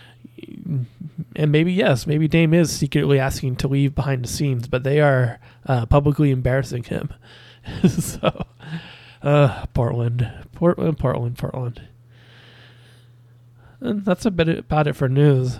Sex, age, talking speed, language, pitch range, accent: male, 20-39, 125 wpm, English, 125-155 Hz, American